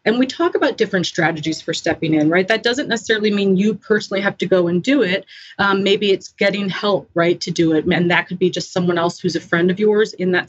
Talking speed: 255 wpm